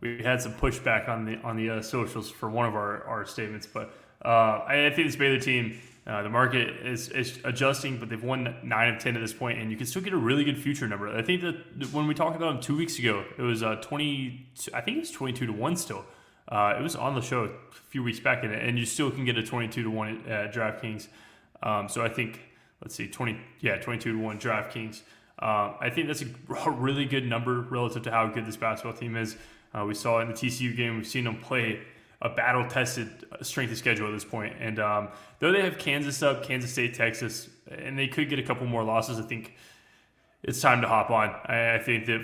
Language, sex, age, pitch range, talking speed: English, male, 20-39, 110-130 Hz, 240 wpm